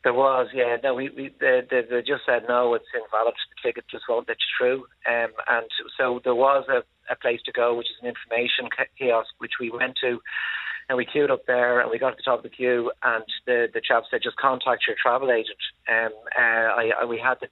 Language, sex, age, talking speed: English, male, 30-49, 245 wpm